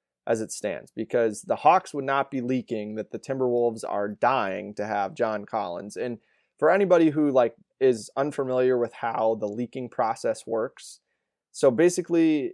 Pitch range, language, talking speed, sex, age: 115-135 Hz, English, 165 wpm, male, 20-39